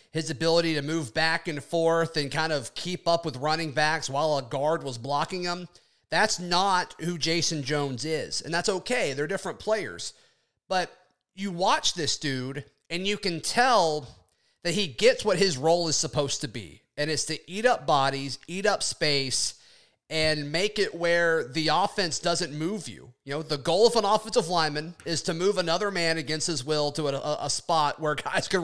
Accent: American